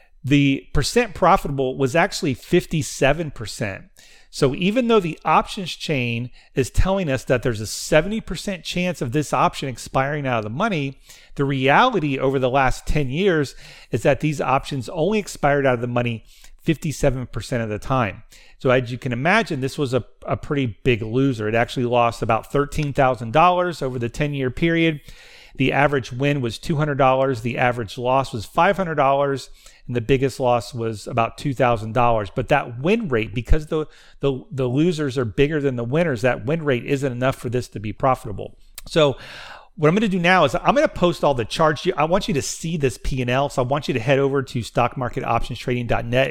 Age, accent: 40-59, American